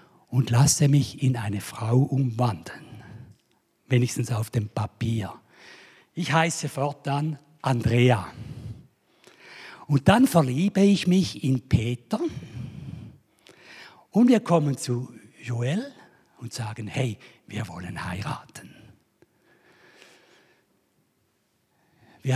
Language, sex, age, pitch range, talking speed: German, male, 60-79, 115-165 Hz, 90 wpm